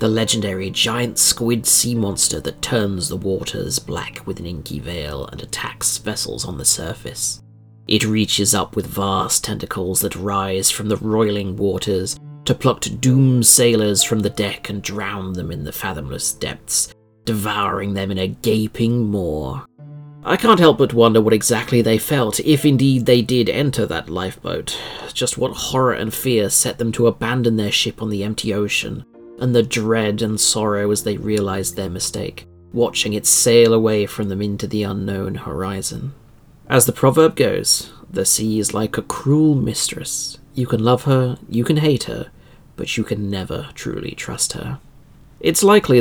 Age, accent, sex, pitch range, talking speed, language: 30-49, British, male, 100-125 Hz, 170 wpm, English